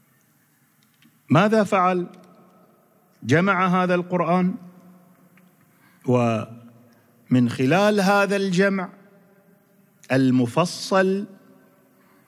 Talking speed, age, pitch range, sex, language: 50 wpm, 40-59, 140-195 Hz, male, Arabic